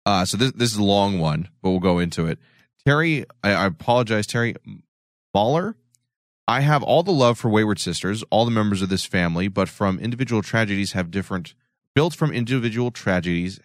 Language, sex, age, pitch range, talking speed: English, male, 30-49, 95-120 Hz, 190 wpm